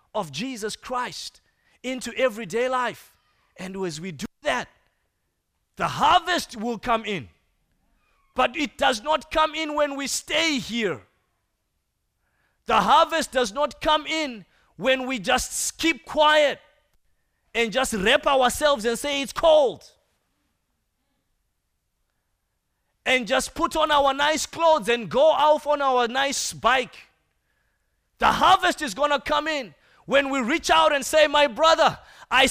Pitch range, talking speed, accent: 240-325 Hz, 140 wpm, South African